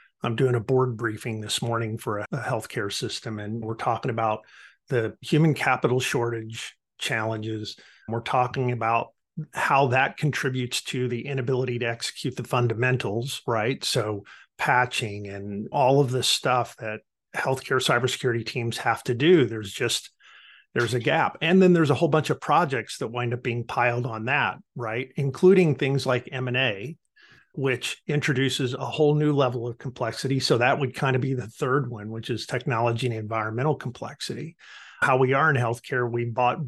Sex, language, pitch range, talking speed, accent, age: male, English, 115-140 Hz, 170 wpm, American, 50-69